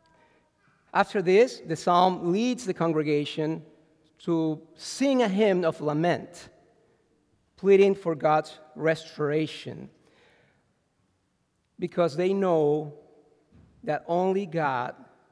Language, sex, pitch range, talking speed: English, male, 150-185 Hz, 90 wpm